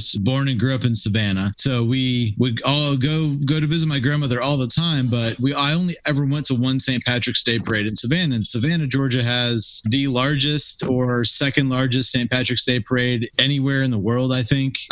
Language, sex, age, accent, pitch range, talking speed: English, male, 30-49, American, 115-145 Hz, 210 wpm